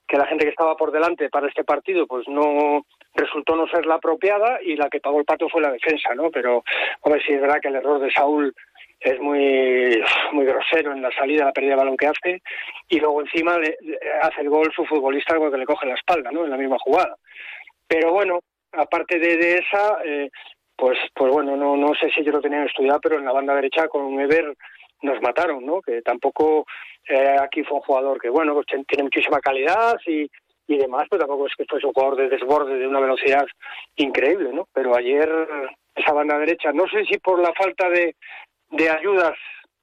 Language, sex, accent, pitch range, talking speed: Spanish, male, Spanish, 140-165 Hz, 220 wpm